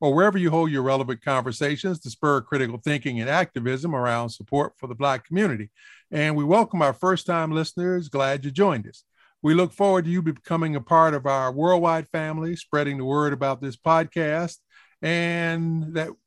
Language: English